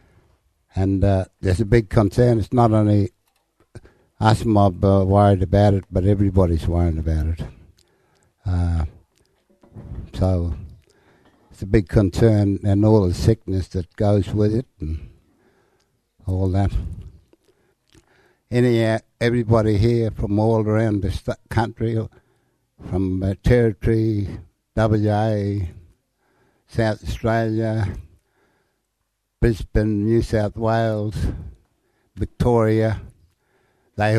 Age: 60-79